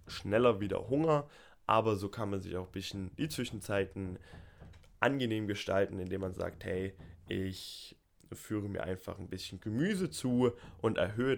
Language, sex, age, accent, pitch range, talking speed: German, male, 10-29, German, 95-120 Hz, 155 wpm